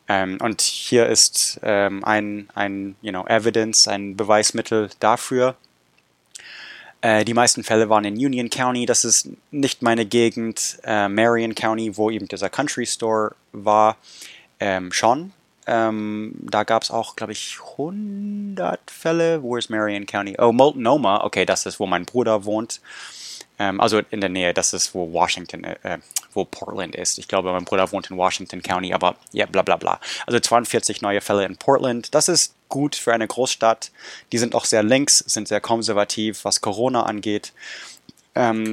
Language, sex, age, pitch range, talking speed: English, male, 20-39, 100-120 Hz, 165 wpm